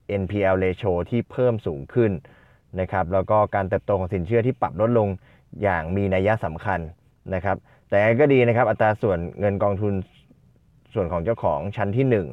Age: 20-39